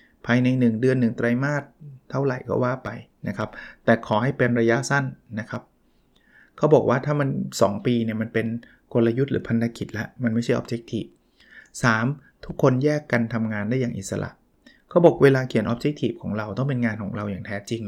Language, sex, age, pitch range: Thai, male, 20-39, 115-140 Hz